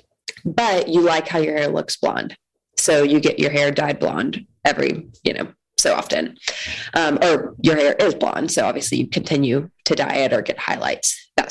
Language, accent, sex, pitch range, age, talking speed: English, American, female, 150-245 Hz, 20-39, 195 wpm